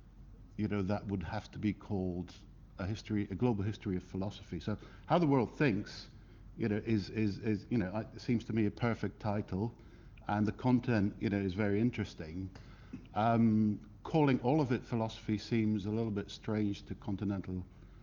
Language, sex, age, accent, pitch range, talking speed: English, male, 50-69, British, 100-115 Hz, 185 wpm